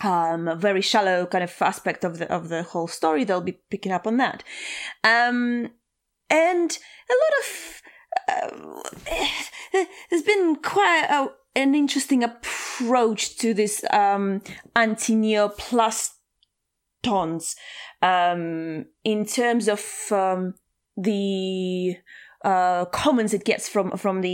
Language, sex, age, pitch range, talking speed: English, female, 20-39, 195-255 Hz, 125 wpm